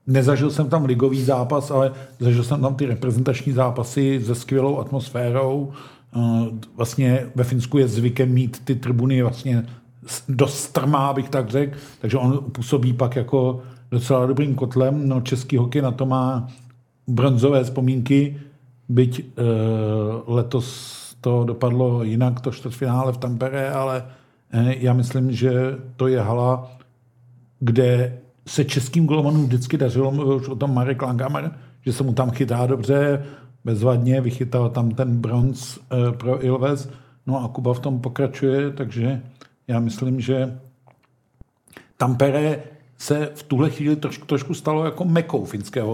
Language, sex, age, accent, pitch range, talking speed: Czech, male, 50-69, native, 125-135 Hz, 135 wpm